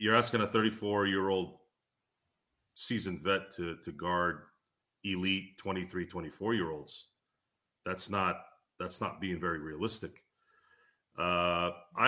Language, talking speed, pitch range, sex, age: English, 120 wpm, 90-105 Hz, male, 40-59